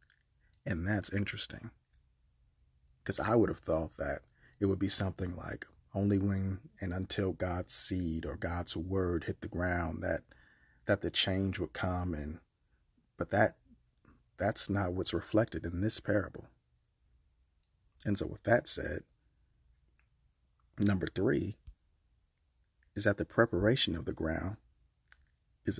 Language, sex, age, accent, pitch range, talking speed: English, male, 40-59, American, 80-100 Hz, 135 wpm